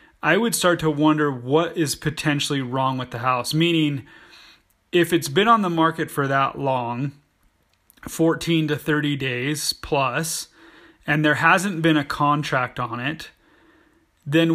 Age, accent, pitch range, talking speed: 30-49, American, 140-165 Hz, 150 wpm